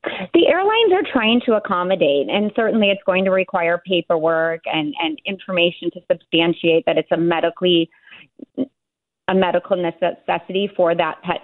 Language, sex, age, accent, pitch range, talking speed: English, female, 30-49, American, 175-215 Hz, 145 wpm